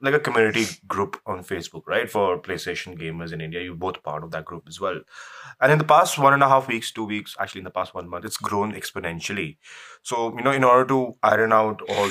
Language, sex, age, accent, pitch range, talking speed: English, male, 20-39, Indian, 95-135 Hz, 245 wpm